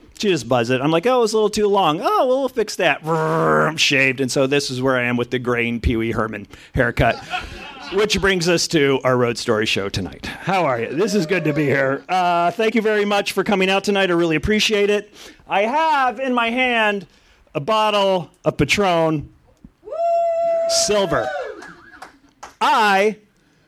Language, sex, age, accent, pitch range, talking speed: English, male, 40-59, American, 155-215 Hz, 195 wpm